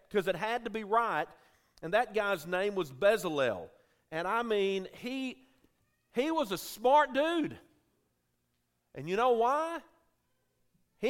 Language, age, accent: English, 50-69, American